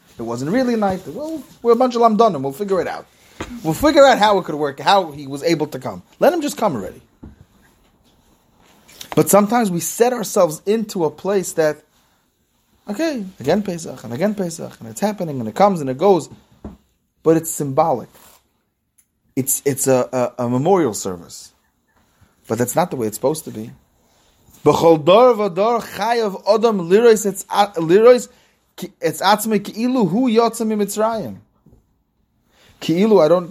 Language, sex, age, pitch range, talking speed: English, male, 30-49, 125-205 Hz, 165 wpm